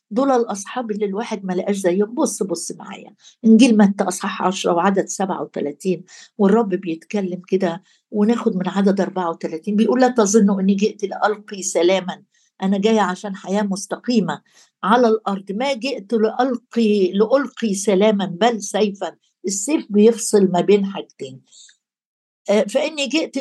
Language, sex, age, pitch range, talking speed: Arabic, female, 60-79, 195-230 Hz, 130 wpm